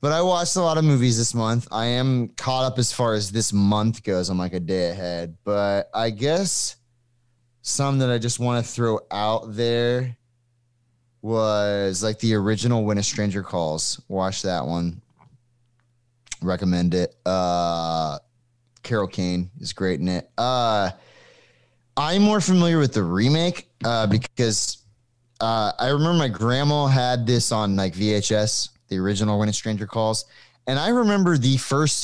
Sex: male